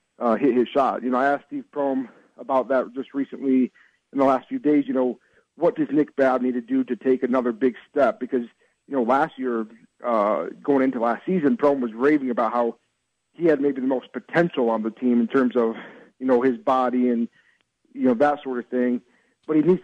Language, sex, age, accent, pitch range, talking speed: English, male, 40-59, American, 125-150 Hz, 225 wpm